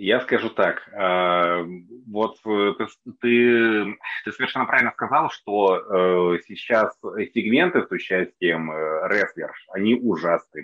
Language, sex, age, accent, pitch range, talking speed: Russian, male, 30-49, native, 90-120 Hz, 100 wpm